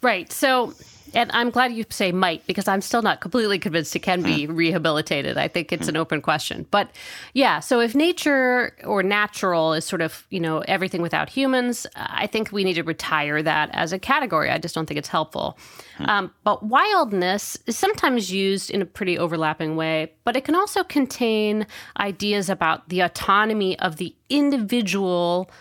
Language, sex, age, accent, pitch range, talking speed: English, female, 30-49, American, 170-220 Hz, 185 wpm